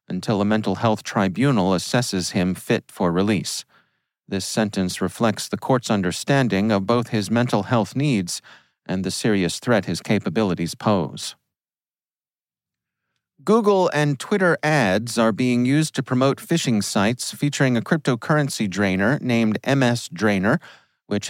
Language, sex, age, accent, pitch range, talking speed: English, male, 40-59, American, 105-130 Hz, 135 wpm